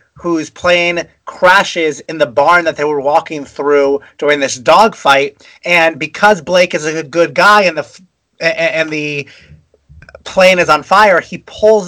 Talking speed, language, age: 155 wpm, English, 30-49